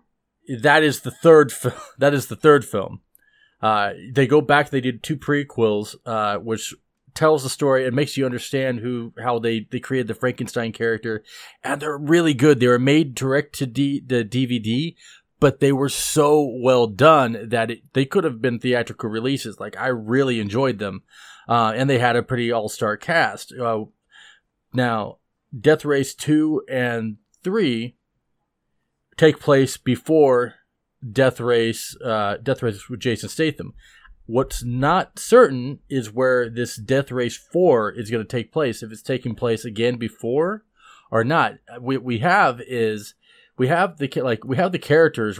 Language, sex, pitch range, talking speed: English, male, 115-145 Hz, 170 wpm